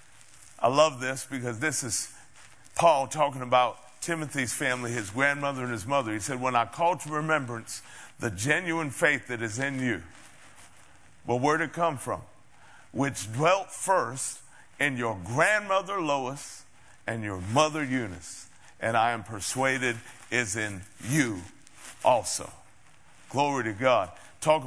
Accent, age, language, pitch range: American, 50-69, English, 115-140 Hz